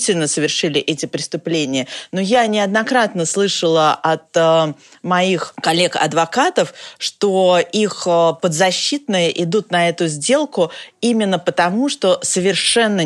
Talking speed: 105 wpm